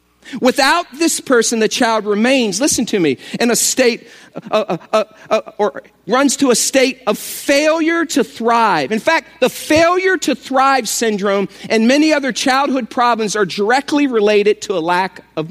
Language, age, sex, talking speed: English, 50-69, male, 170 wpm